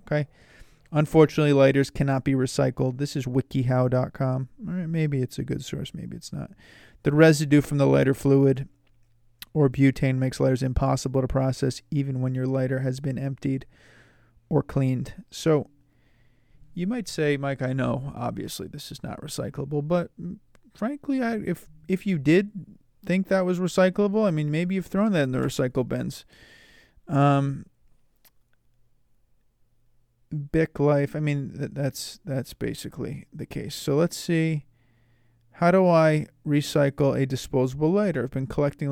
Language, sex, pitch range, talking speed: English, male, 130-155 Hz, 150 wpm